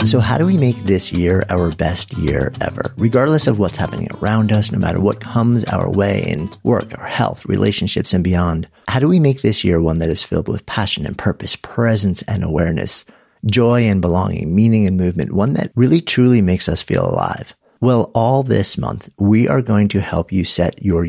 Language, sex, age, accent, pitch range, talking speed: English, male, 50-69, American, 95-125 Hz, 210 wpm